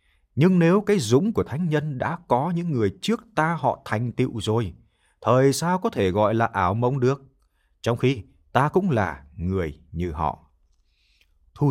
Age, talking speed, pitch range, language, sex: 20-39, 180 wpm, 85-135 Hz, Vietnamese, male